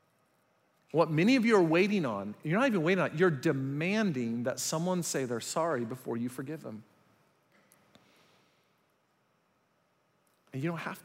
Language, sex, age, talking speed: English, male, 40-59, 145 wpm